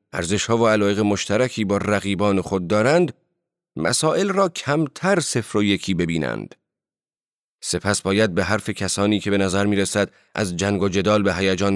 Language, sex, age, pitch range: Persian, male, 40-59, 100-130 Hz